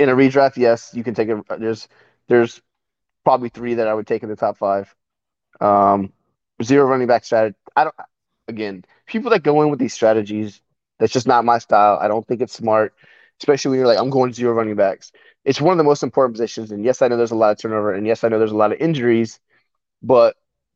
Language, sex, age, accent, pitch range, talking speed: English, male, 20-39, American, 110-135 Hz, 230 wpm